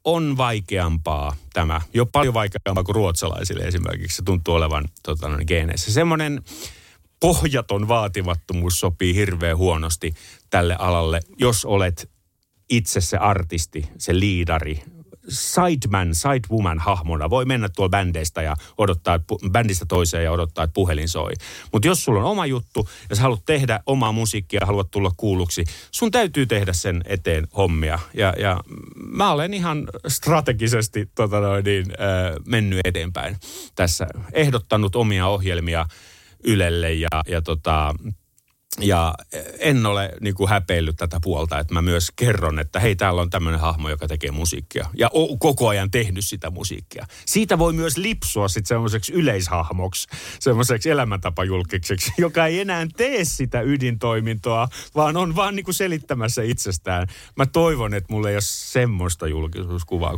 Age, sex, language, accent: 30-49, male, Finnish, native